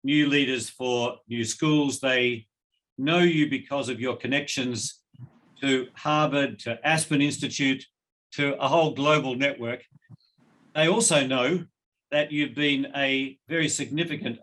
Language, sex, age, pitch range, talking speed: English, male, 50-69, 125-150 Hz, 130 wpm